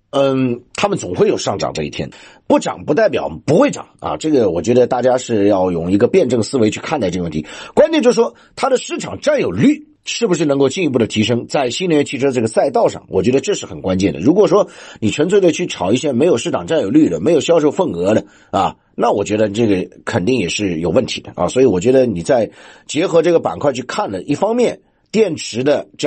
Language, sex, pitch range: Chinese, male, 110-165 Hz